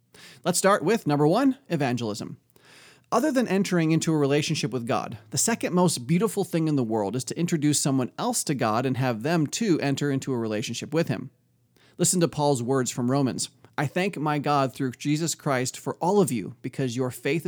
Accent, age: American, 30-49